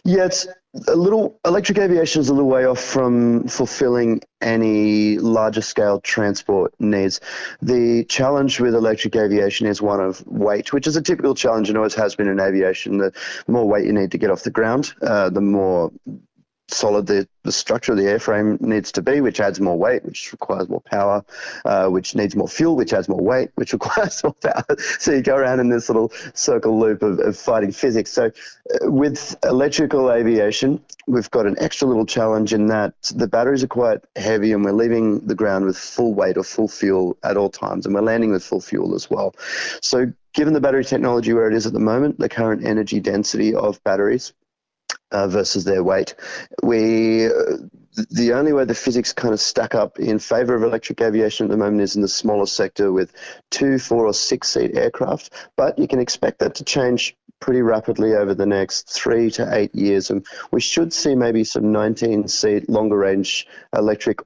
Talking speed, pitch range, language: 200 wpm, 105-135 Hz, English